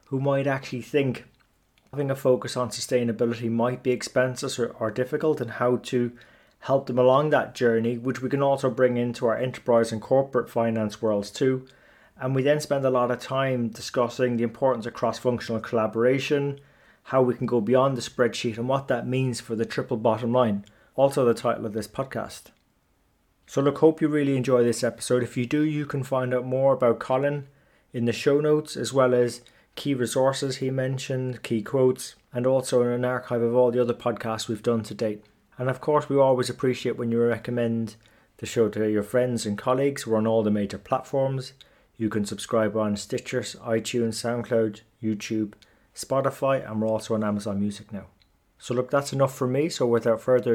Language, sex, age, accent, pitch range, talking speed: English, male, 30-49, British, 110-130 Hz, 195 wpm